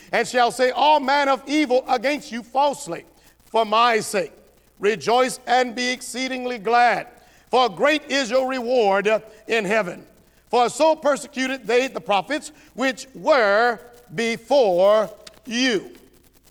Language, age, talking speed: English, 50-69, 125 wpm